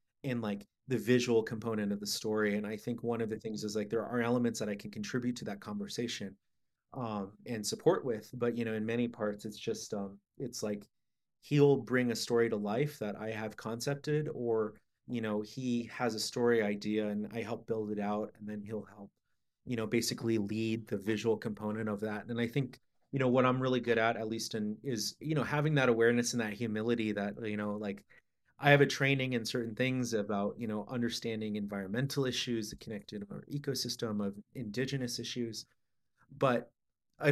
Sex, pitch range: male, 105-125 Hz